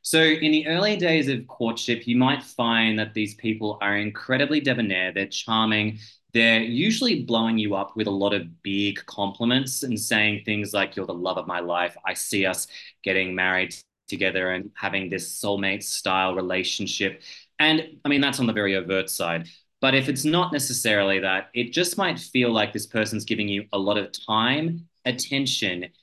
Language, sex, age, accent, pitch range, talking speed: English, male, 20-39, Australian, 100-125 Hz, 185 wpm